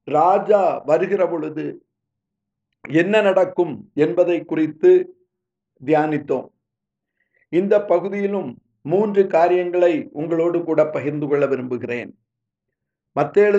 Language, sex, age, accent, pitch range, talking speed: Tamil, male, 50-69, native, 155-230 Hz, 75 wpm